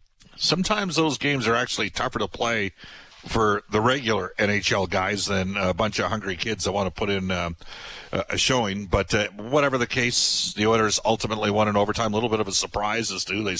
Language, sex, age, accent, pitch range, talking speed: English, male, 50-69, American, 95-120 Hz, 210 wpm